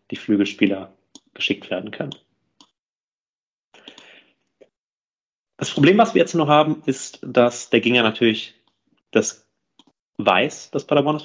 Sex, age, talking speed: male, 30-49, 110 wpm